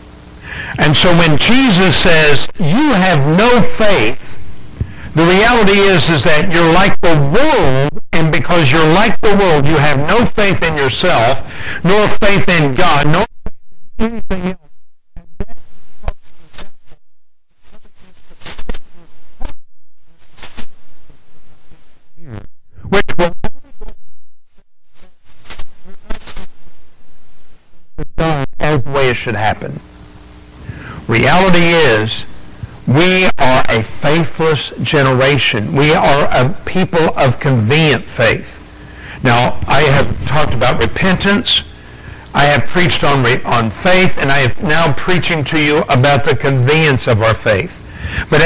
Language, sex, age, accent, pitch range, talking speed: English, male, 60-79, American, 135-185 Hz, 110 wpm